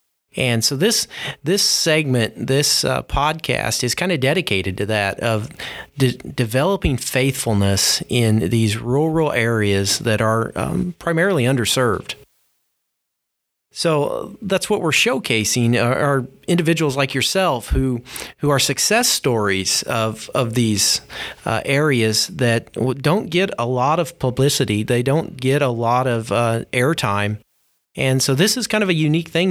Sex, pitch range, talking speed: male, 120-155 Hz, 145 wpm